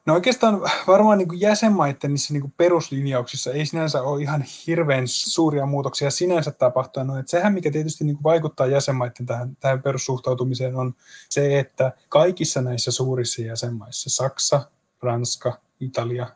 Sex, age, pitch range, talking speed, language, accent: male, 20-39, 120-145 Hz, 120 wpm, Finnish, native